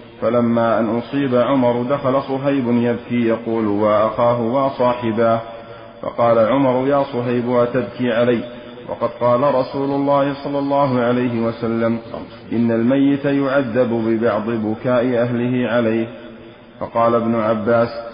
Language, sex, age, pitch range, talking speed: Arabic, male, 40-59, 115-125 Hz, 110 wpm